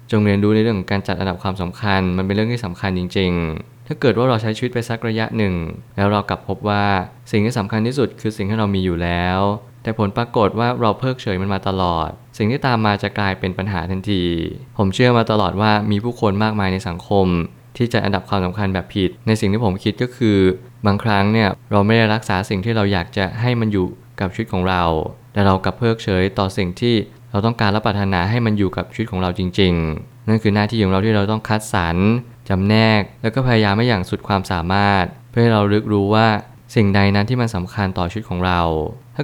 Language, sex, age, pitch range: Thai, male, 20-39, 95-115 Hz